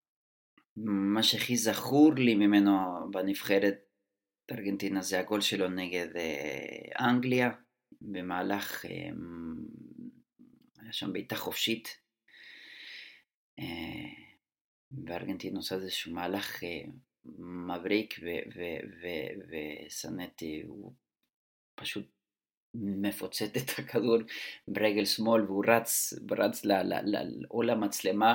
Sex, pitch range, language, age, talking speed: male, 100-125 Hz, Hebrew, 30-49, 90 wpm